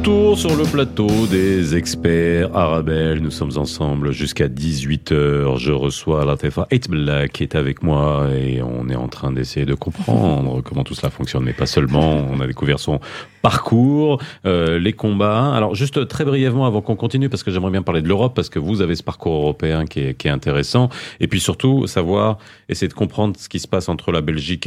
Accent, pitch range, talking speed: French, 80-115 Hz, 200 wpm